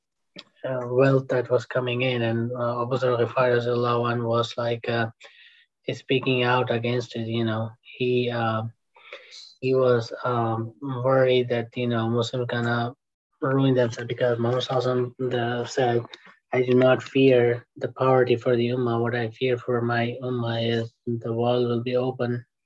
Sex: male